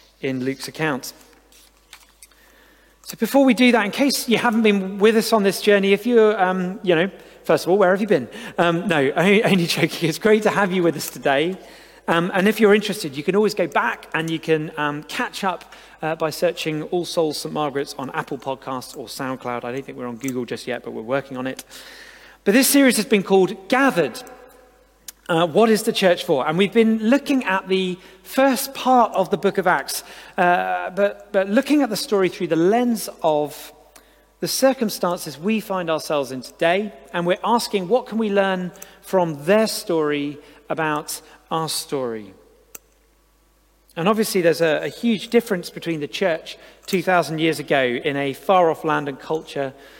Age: 30-49